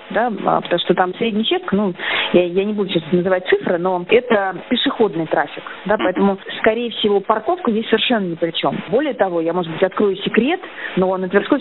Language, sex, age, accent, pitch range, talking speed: Russian, female, 20-39, native, 180-235 Hz, 195 wpm